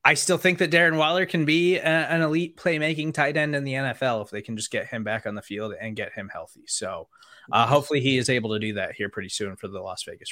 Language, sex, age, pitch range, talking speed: English, male, 20-39, 115-160 Hz, 265 wpm